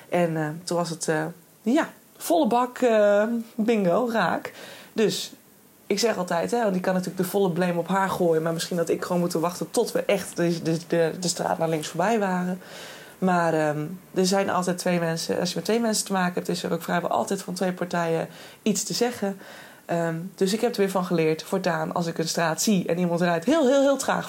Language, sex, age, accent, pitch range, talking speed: Dutch, female, 20-39, Dutch, 170-215 Hz, 220 wpm